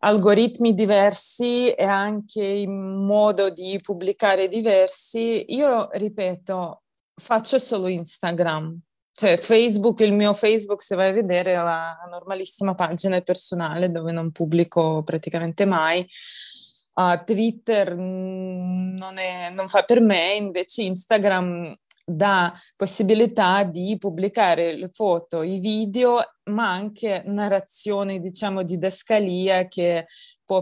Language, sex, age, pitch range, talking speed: Italian, female, 20-39, 180-220 Hz, 110 wpm